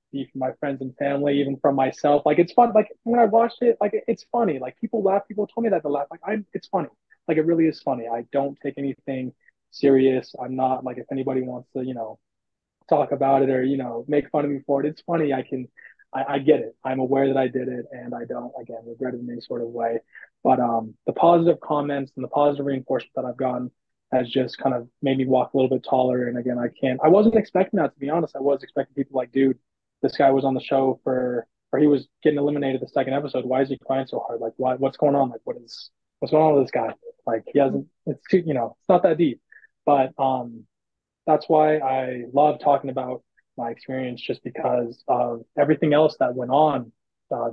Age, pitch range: 20-39, 125-145 Hz